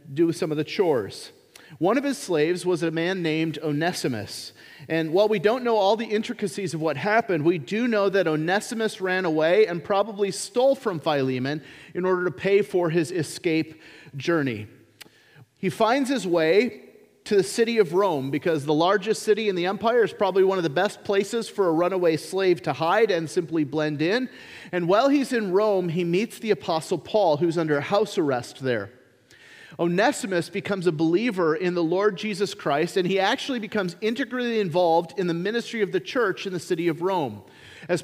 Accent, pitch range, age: American, 165-220 Hz, 40-59